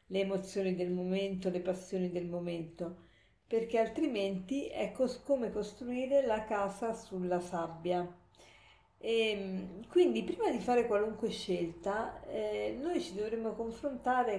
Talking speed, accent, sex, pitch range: 115 wpm, native, female, 185-225 Hz